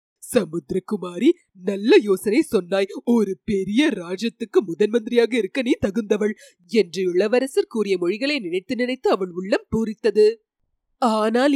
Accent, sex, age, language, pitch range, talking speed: native, female, 30-49, Tamil, 210-305 Hz, 115 wpm